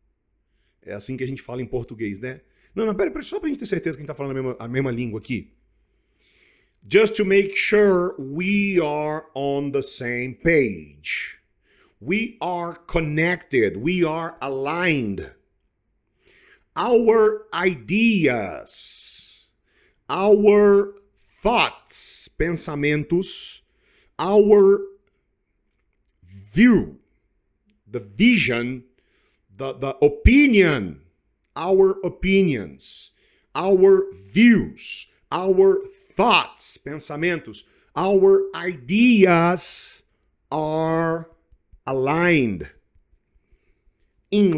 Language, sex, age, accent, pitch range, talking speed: English, male, 50-69, Brazilian, 125-195 Hz, 95 wpm